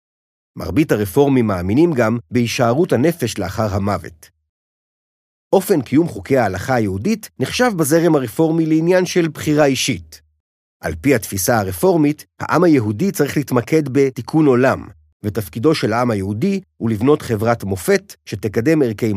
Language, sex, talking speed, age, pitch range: Hebrew, male, 125 wpm, 50-69, 95-150 Hz